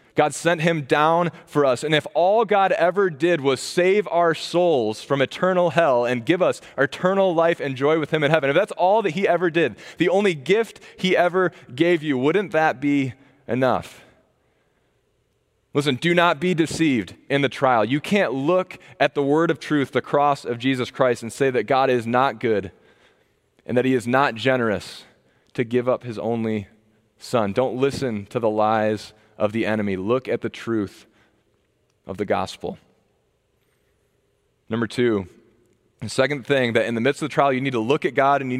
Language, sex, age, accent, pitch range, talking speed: English, male, 20-39, American, 120-165 Hz, 190 wpm